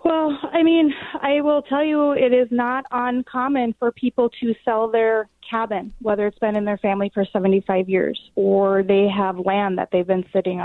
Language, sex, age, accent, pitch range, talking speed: English, female, 30-49, American, 195-240 Hz, 190 wpm